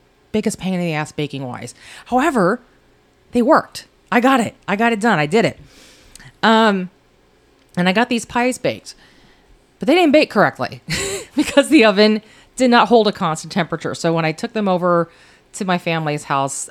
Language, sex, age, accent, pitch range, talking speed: English, female, 30-49, American, 145-185 Hz, 185 wpm